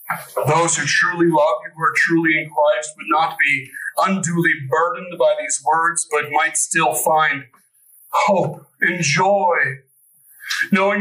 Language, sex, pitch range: English, male, 150-220 Hz